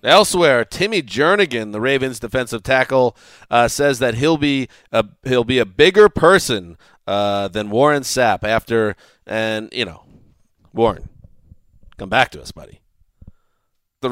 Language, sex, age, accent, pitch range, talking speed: English, male, 30-49, American, 105-130 Hz, 140 wpm